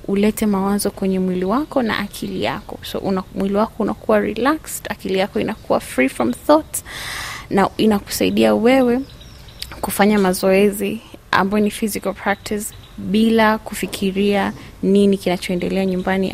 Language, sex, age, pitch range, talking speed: Swahili, female, 20-39, 195-230 Hz, 125 wpm